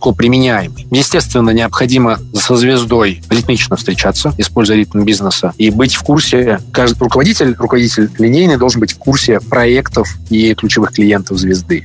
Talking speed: 135 wpm